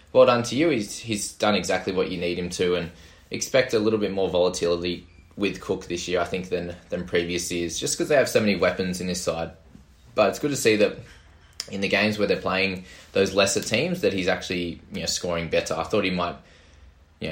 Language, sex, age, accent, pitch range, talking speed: English, male, 20-39, Australian, 85-105 Hz, 230 wpm